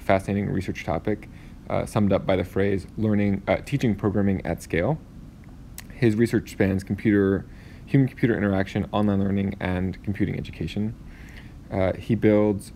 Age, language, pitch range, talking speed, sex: 20-39, English, 90-105 Hz, 135 wpm, male